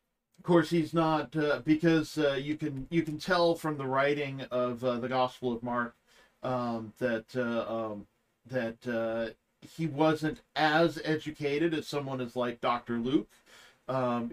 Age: 40-59